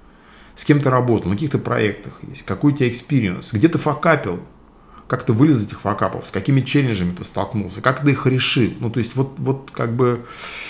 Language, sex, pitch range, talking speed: Russian, male, 105-155 Hz, 200 wpm